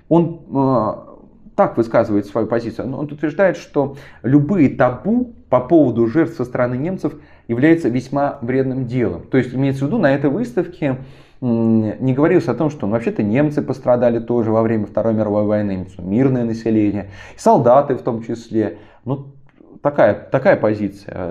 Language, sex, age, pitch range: Russian, male, 20-39, 110-145 Hz